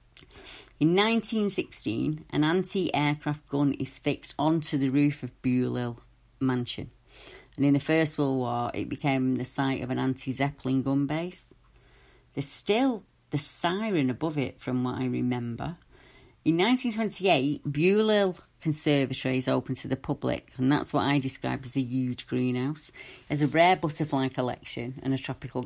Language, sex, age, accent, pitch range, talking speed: English, female, 40-59, British, 130-150 Hz, 150 wpm